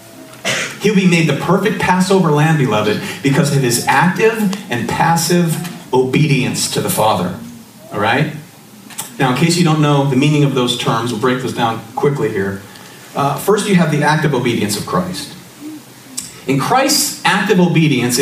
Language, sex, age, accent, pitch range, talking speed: English, male, 40-59, American, 130-175 Hz, 160 wpm